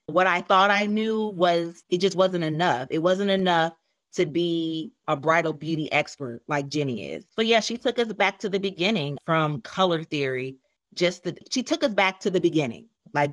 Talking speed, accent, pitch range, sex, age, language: 200 wpm, American, 155-190 Hz, female, 30-49, English